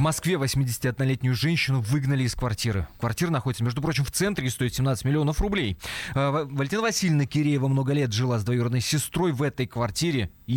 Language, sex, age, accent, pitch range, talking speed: Russian, male, 20-39, native, 110-145 Hz, 175 wpm